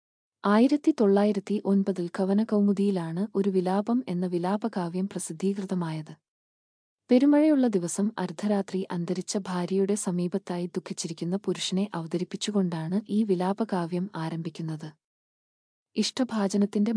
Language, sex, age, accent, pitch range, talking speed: Malayalam, female, 20-39, native, 175-205 Hz, 80 wpm